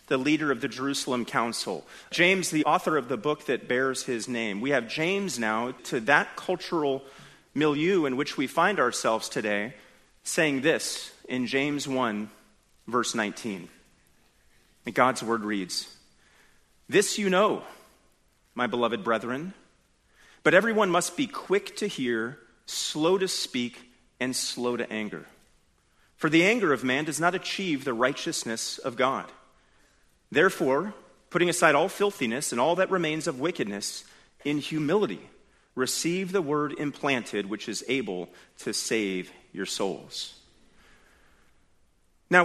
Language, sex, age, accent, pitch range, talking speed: English, male, 30-49, American, 120-175 Hz, 140 wpm